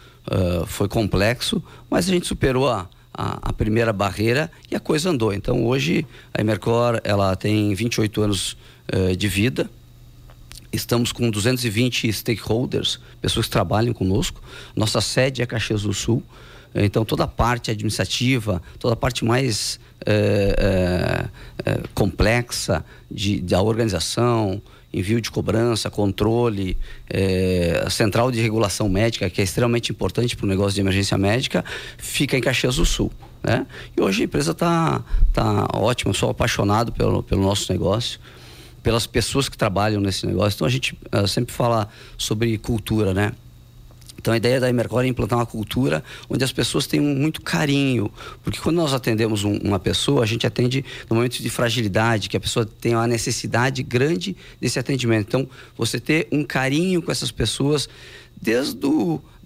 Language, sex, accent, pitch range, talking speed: Portuguese, male, Brazilian, 105-125 Hz, 155 wpm